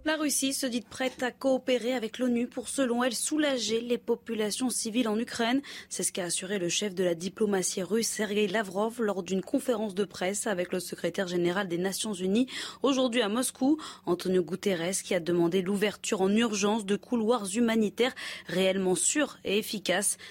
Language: French